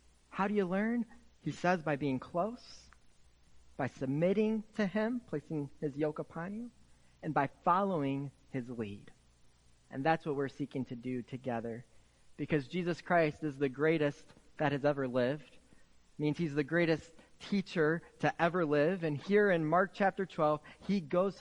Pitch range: 125-180 Hz